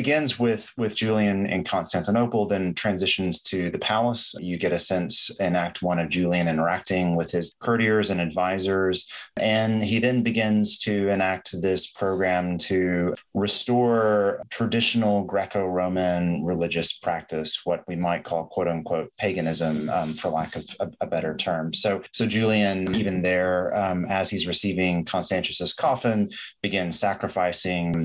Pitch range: 85-105 Hz